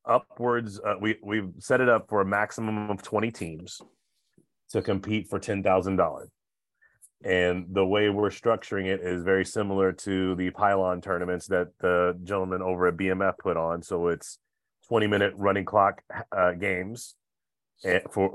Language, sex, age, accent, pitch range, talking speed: English, male, 30-49, American, 90-100 Hz, 160 wpm